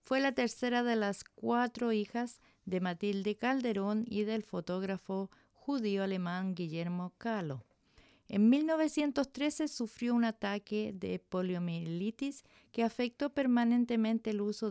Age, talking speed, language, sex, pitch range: 50-69, 115 wpm, English, female, 185-230 Hz